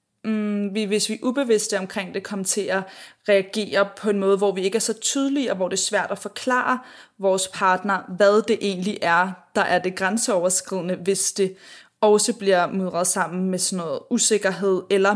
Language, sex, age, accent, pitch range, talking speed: Danish, female, 20-39, native, 185-210 Hz, 185 wpm